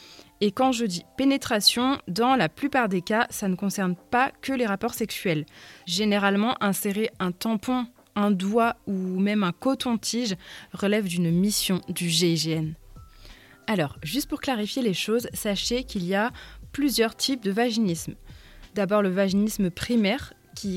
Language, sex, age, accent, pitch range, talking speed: French, female, 20-39, French, 185-230 Hz, 150 wpm